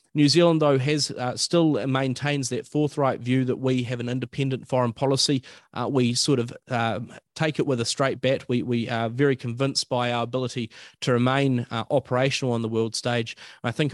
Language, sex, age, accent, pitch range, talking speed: English, male, 30-49, Australian, 115-135 Hz, 200 wpm